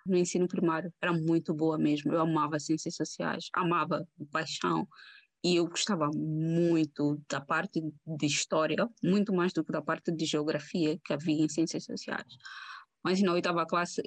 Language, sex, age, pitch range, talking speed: Portuguese, female, 20-39, 160-195 Hz, 160 wpm